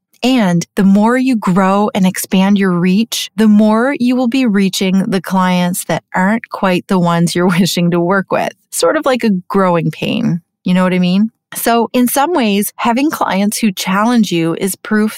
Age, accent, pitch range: 30-49, American, 190-230 Hz